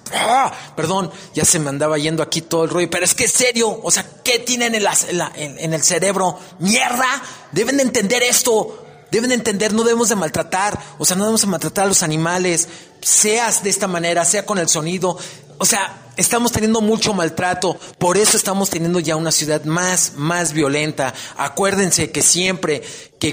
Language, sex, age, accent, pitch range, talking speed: Spanish, male, 30-49, Mexican, 155-195 Hz, 195 wpm